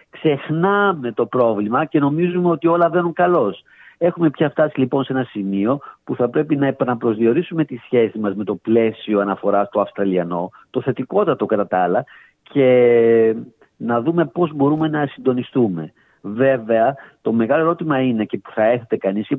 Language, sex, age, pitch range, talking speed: Greek, male, 50-69, 115-160 Hz, 165 wpm